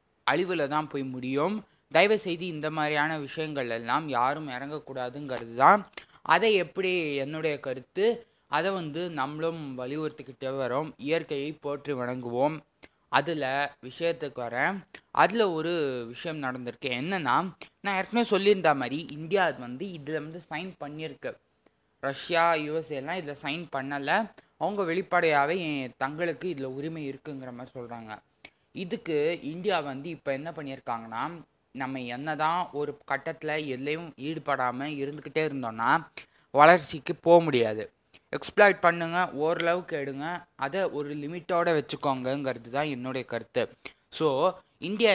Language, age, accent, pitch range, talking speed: Tamil, 20-39, native, 135-170 Hz, 115 wpm